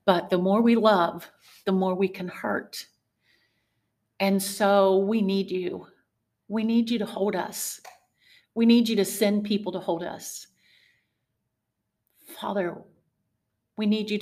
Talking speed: 145 wpm